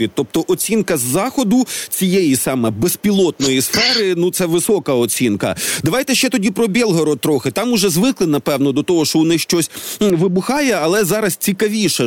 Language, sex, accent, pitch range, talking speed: Ukrainian, male, native, 165-205 Hz, 160 wpm